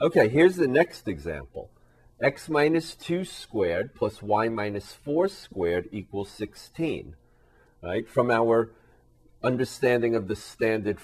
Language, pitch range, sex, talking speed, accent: English, 90-115 Hz, male, 120 wpm, American